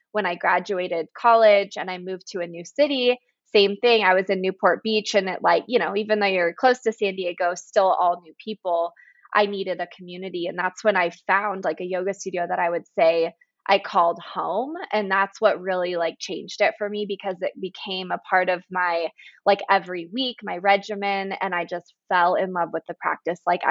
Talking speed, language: 215 wpm, English